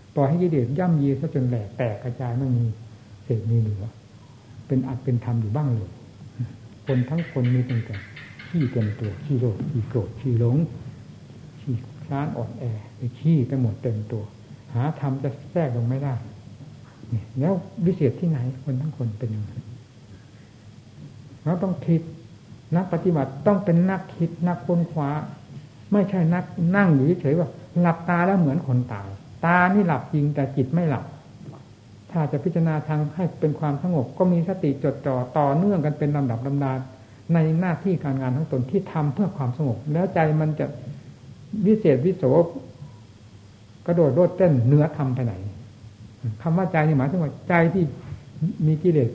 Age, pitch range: 60-79, 120-160 Hz